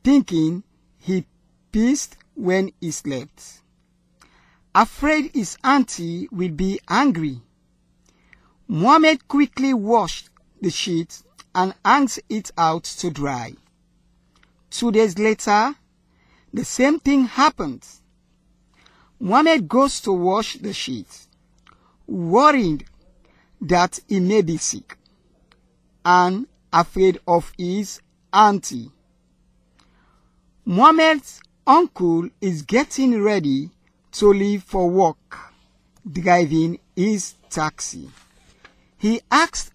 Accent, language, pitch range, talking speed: Nigerian, English, 175-260 Hz, 90 wpm